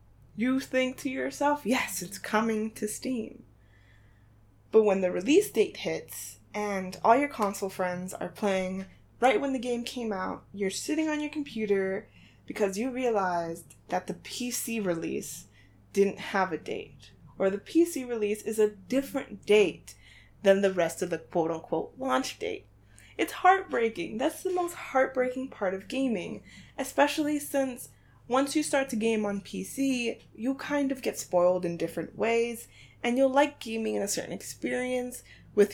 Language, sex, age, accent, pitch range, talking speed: English, female, 20-39, American, 185-265 Hz, 160 wpm